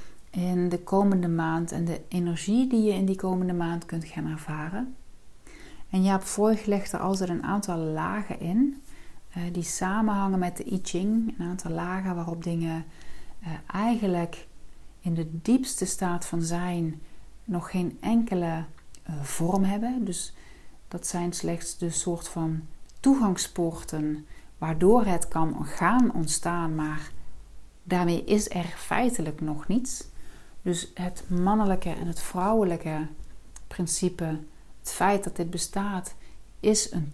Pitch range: 165-195 Hz